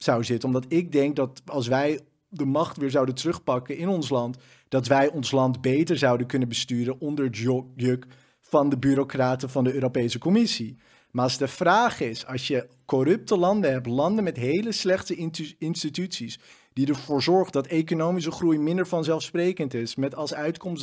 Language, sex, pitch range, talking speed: Dutch, male, 130-170 Hz, 175 wpm